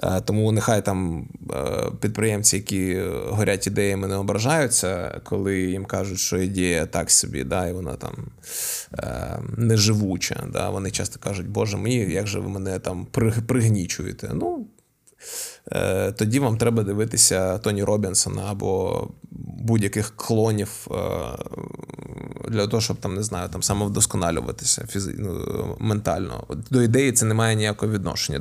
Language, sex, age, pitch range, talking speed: Ukrainian, male, 20-39, 95-115 Hz, 125 wpm